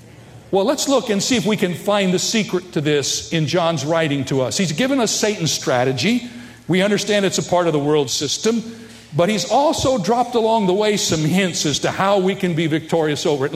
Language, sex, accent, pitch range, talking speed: English, male, American, 150-210 Hz, 220 wpm